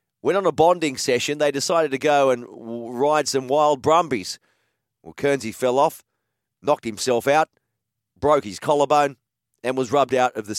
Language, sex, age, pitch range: English, male, 40-59, 110-145 Hz